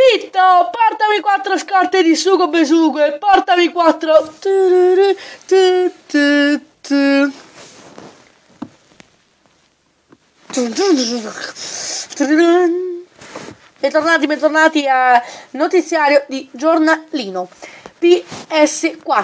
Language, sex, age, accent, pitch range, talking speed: Italian, female, 20-39, native, 275-360 Hz, 55 wpm